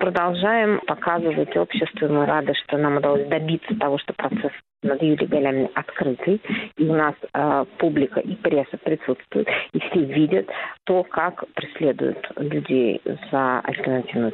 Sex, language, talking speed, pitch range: female, Russian, 135 wpm, 150-190 Hz